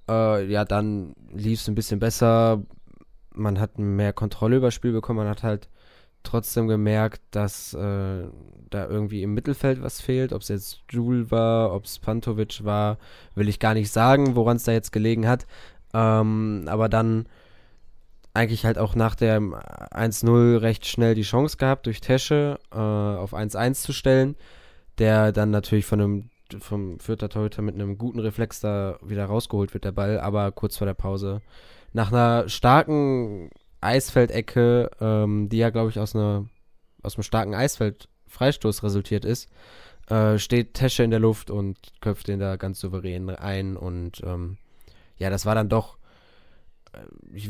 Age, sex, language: 20-39, male, German